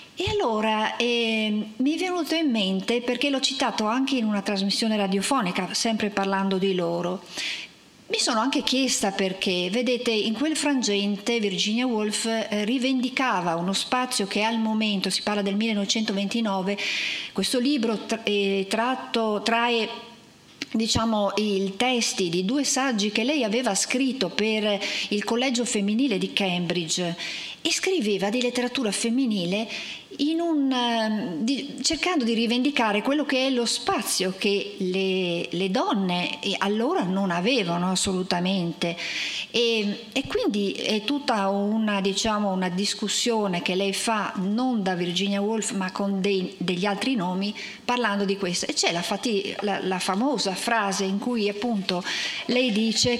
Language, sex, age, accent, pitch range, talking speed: Italian, female, 50-69, native, 195-245 Hz, 140 wpm